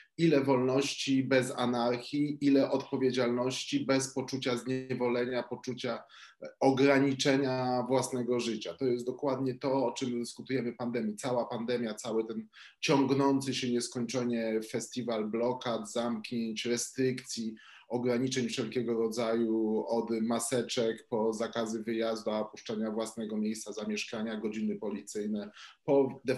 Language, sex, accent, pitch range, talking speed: Polish, male, native, 110-130 Hz, 110 wpm